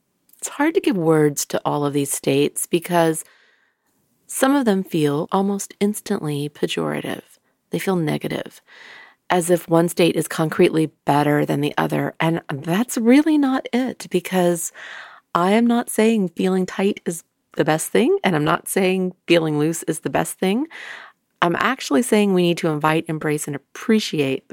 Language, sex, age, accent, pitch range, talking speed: English, female, 40-59, American, 150-195 Hz, 165 wpm